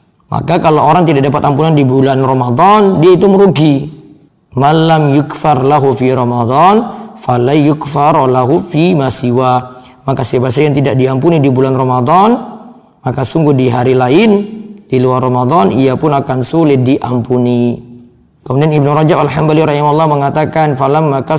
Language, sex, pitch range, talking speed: Indonesian, male, 130-160 Hz, 145 wpm